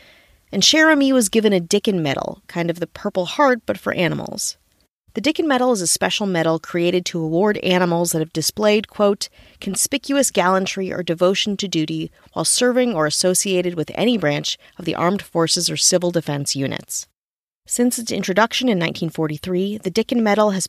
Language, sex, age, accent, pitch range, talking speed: English, female, 30-49, American, 165-245 Hz, 175 wpm